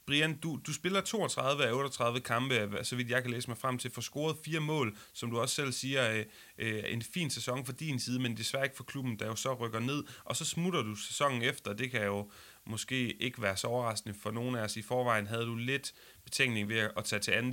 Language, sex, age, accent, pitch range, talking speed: Danish, male, 30-49, native, 115-145 Hz, 245 wpm